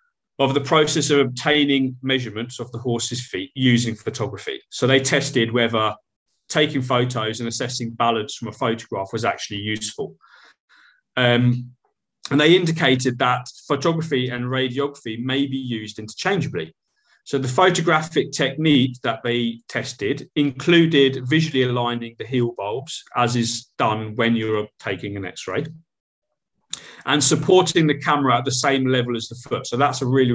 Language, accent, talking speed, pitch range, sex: English, British, 150 wpm, 115-140 Hz, male